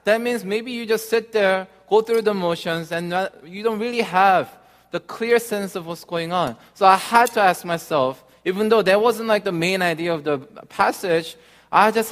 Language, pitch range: Korean, 145-195 Hz